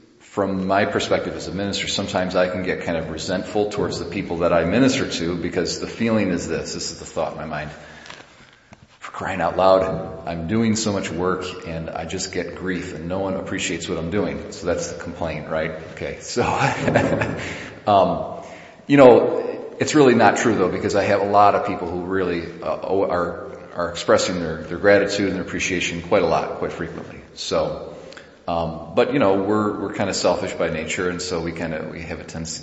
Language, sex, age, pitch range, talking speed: English, male, 40-59, 85-100 Hz, 210 wpm